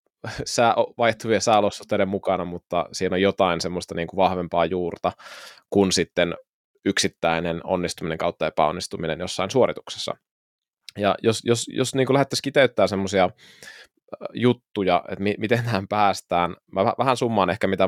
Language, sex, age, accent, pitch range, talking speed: Finnish, male, 20-39, native, 90-105 Hz, 140 wpm